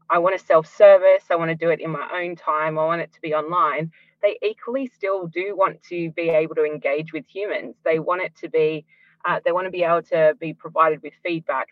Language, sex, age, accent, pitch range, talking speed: English, female, 20-39, Australian, 155-200 Hz, 240 wpm